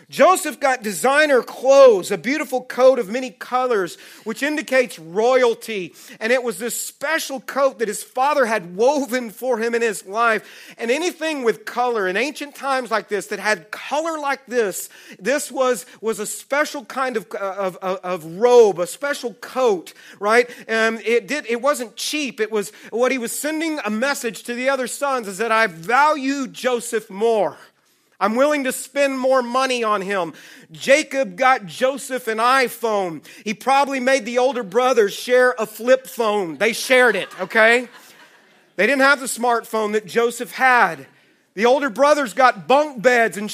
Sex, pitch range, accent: male, 215-270 Hz, American